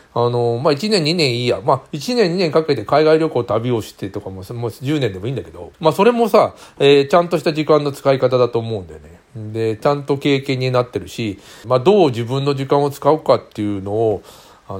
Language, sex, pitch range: Japanese, male, 110-150 Hz